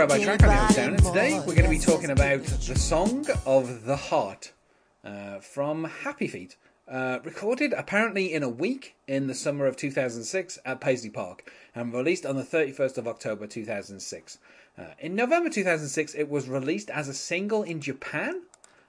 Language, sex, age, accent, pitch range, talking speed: English, male, 30-49, British, 110-160 Hz, 160 wpm